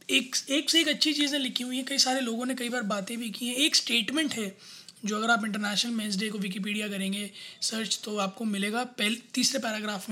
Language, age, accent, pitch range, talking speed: Hindi, 20-39, native, 205-250 Hz, 235 wpm